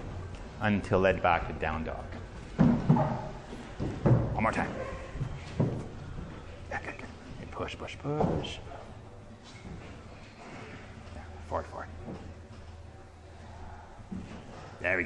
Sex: male